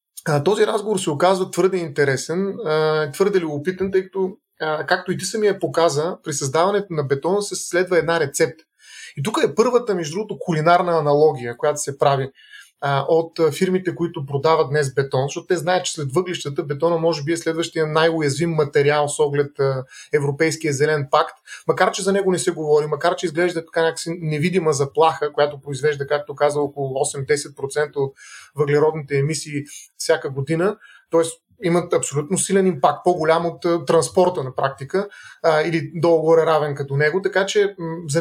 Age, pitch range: 30-49, 150-185 Hz